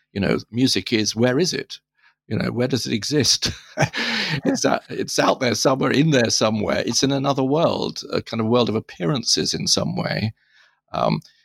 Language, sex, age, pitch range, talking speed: English, male, 50-69, 105-130 Hz, 190 wpm